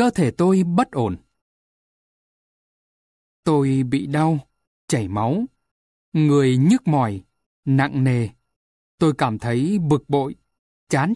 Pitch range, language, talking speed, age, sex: 135-190 Hz, Vietnamese, 115 wpm, 20-39, male